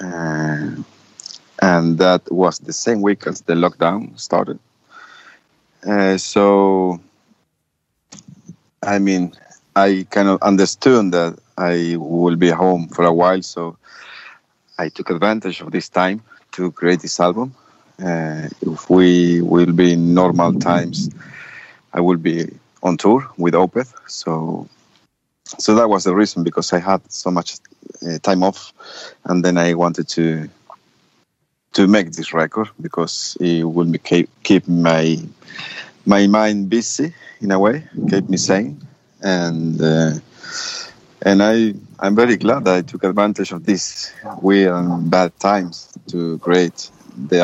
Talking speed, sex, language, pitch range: 140 wpm, male, English, 85-95 Hz